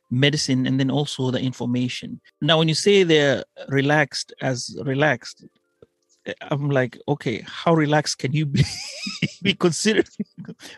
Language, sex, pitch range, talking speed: Swahili, male, 130-165 Hz, 130 wpm